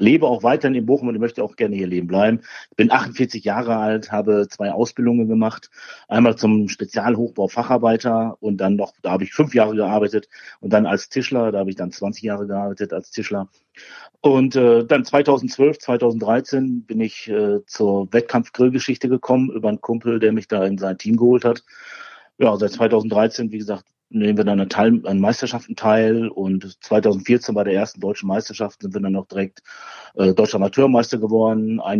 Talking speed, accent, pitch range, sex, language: 185 wpm, German, 105-125 Hz, male, German